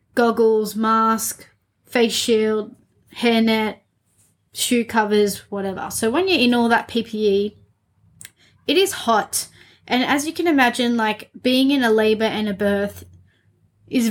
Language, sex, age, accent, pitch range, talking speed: English, female, 20-39, Australian, 200-235 Hz, 140 wpm